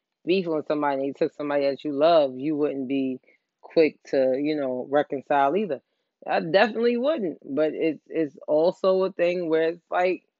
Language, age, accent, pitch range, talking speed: English, 20-39, American, 135-185 Hz, 180 wpm